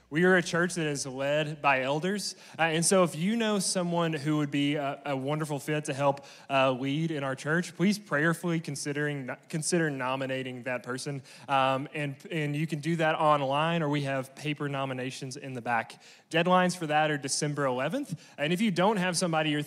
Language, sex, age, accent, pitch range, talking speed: English, male, 20-39, American, 140-170 Hz, 200 wpm